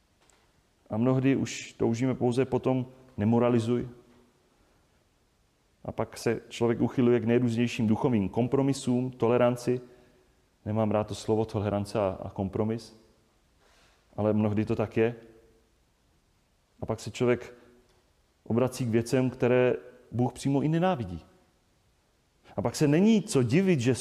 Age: 30-49